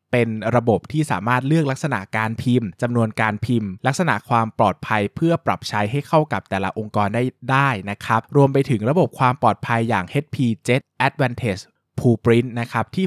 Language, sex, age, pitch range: Thai, male, 20-39, 105-130 Hz